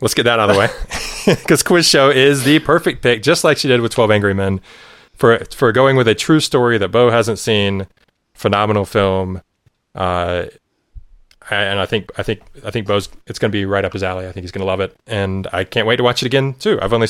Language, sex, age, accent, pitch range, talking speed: English, male, 20-39, American, 95-115 Hz, 245 wpm